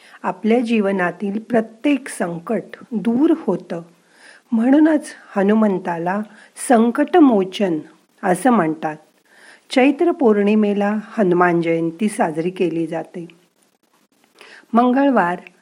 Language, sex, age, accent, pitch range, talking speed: Marathi, female, 50-69, native, 180-235 Hz, 75 wpm